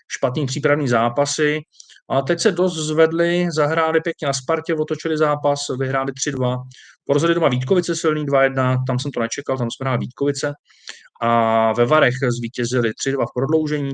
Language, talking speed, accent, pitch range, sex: Czech, 155 wpm, native, 125-155 Hz, male